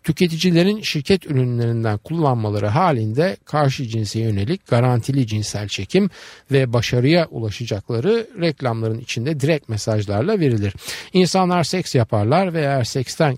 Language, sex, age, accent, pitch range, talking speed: Turkish, male, 50-69, native, 115-165 Hz, 110 wpm